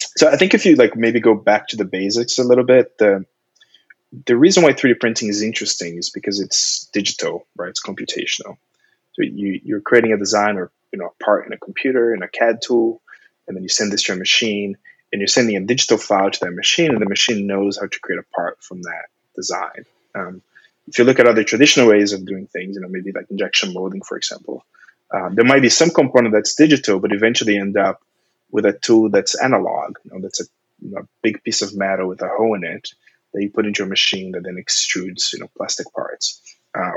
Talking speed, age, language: 225 wpm, 20-39, English